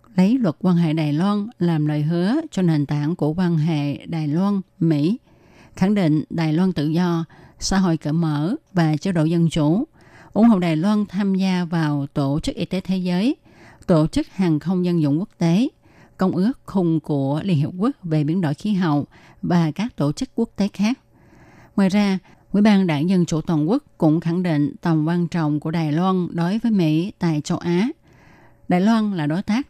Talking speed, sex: 205 wpm, female